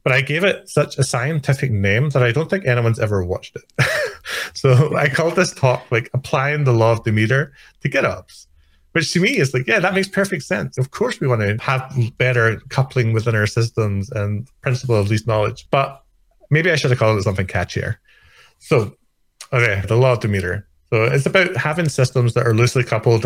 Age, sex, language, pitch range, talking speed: 30-49, male, English, 105-135 Hz, 205 wpm